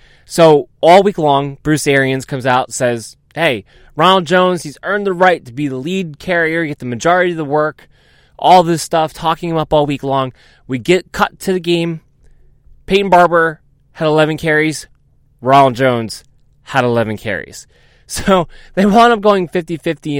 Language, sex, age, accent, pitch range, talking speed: English, male, 20-39, American, 130-170 Hz, 175 wpm